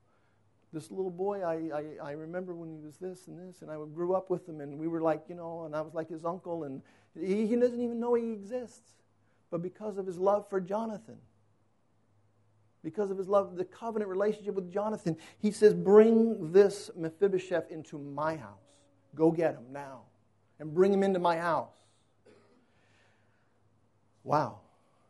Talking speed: 175 wpm